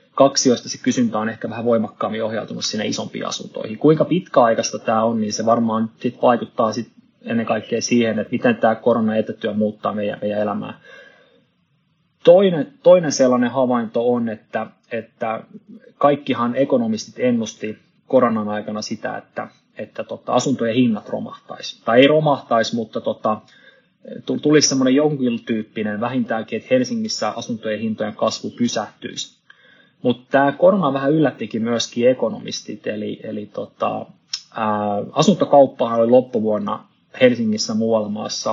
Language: Finnish